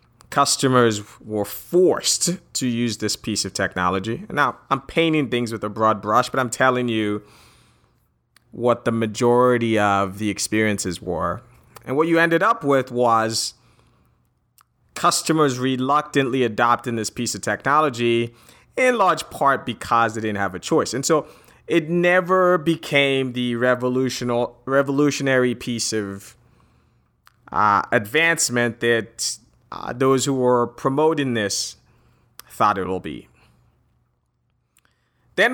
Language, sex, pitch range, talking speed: English, male, 110-140 Hz, 125 wpm